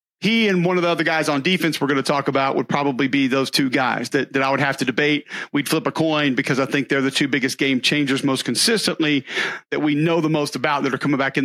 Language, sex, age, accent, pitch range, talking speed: English, male, 40-59, American, 145-190 Hz, 280 wpm